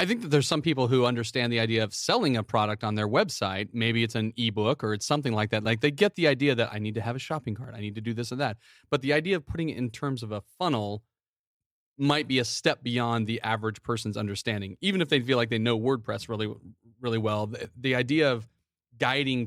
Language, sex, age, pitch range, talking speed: English, male, 30-49, 110-135 Hz, 255 wpm